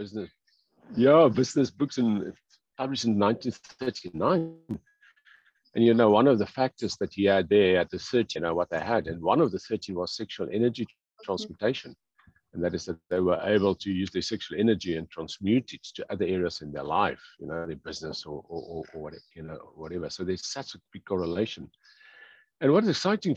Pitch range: 90-120 Hz